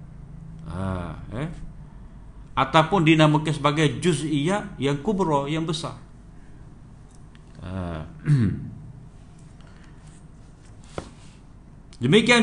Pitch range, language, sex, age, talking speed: 125-160 Hz, Malay, male, 50-69, 60 wpm